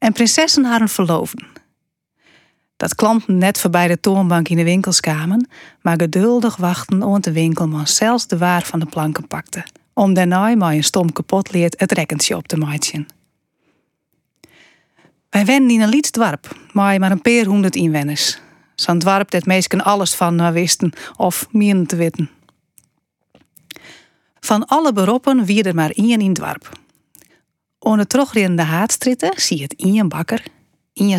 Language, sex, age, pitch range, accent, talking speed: Dutch, female, 40-59, 170-225 Hz, Dutch, 155 wpm